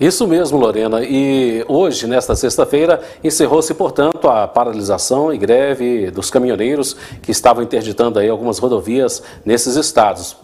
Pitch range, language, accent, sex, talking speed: 115-150 Hz, Portuguese, Brazilian, male, 130 wpm